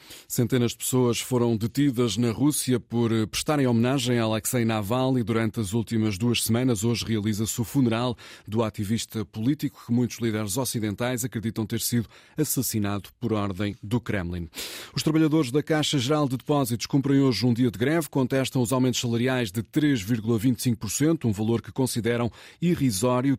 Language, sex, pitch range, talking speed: Portuguese, male, 110-130 Hz, 160 wpm